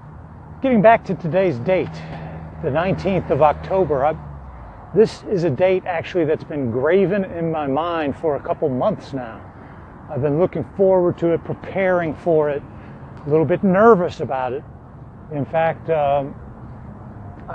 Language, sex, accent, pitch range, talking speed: English, male, American, 125-180 Hz, 145 wpm